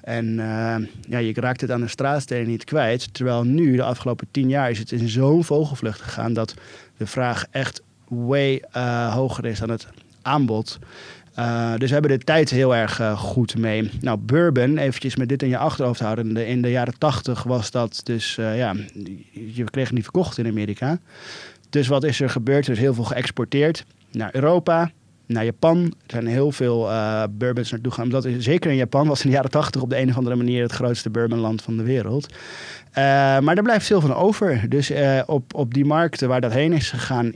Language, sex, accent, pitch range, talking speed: Dutch, male, Dutch, 115-140 Hz, 210 wpm